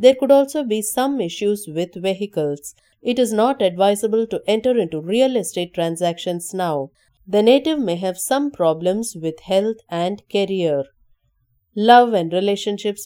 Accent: Indian